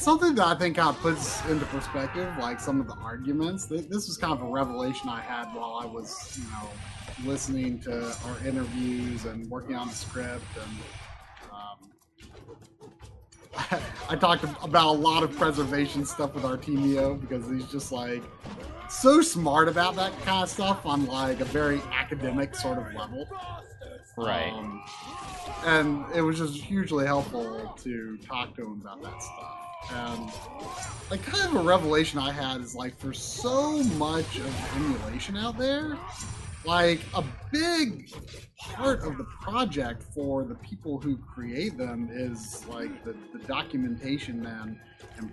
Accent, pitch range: American, 120-165 Hz